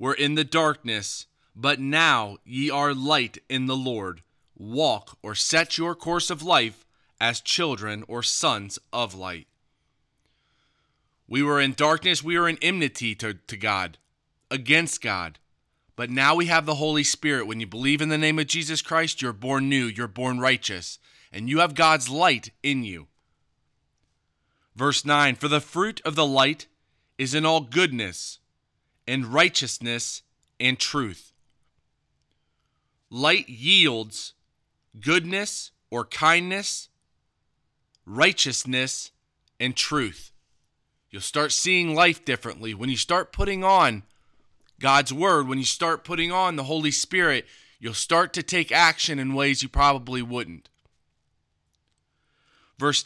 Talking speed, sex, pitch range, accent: 140 wpm, male, 120-160 Hz, American